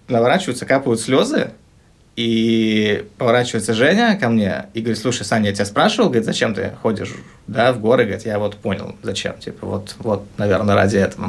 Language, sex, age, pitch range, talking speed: Russian, male, 20-39, 100-120 Hz, 175 wpm